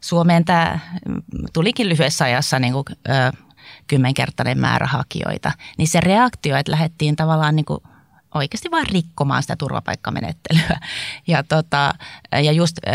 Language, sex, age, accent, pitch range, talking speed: Finnish, female, 30-49, native, 150-185 Hz, 130 wpm